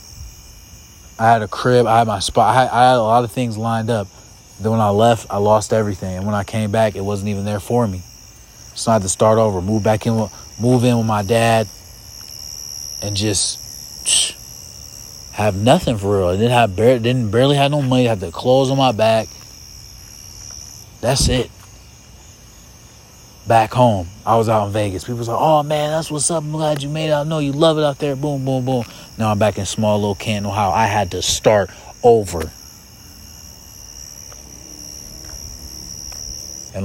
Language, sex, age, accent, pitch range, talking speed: English, male, 30-49, American, 95-115 Hz, 190 wpm